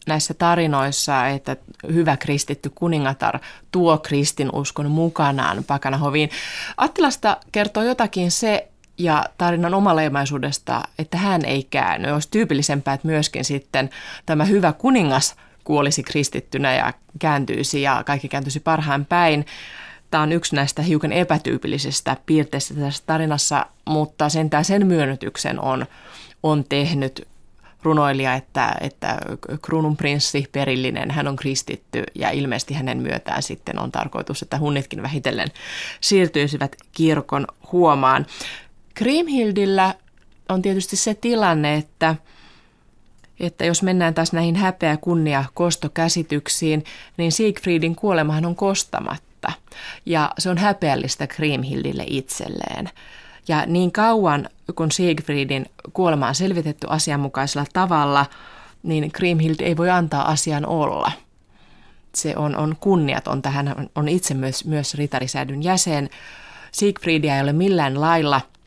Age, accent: 20-39, native